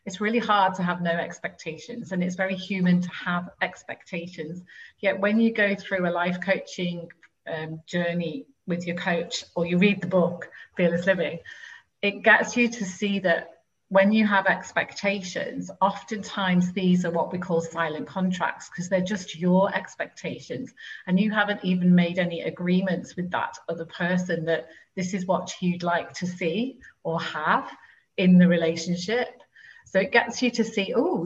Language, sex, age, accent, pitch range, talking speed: English, female, 40-59, British, 175-205 Hz, 170 wpm